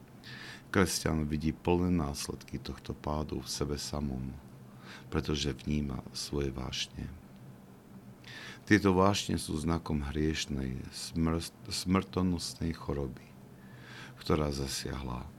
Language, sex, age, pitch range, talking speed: Slovak, male, 50-69, 65-80 Hz, 90 wpm